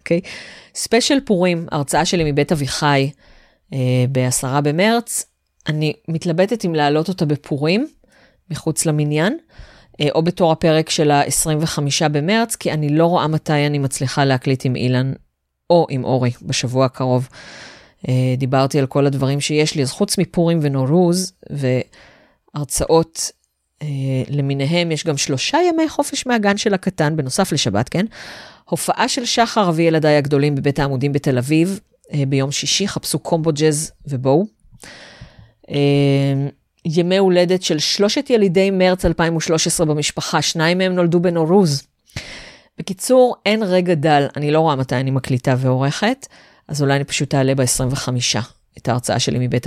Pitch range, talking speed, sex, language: 140-180 Hz, 140 wpm, female, Hebrew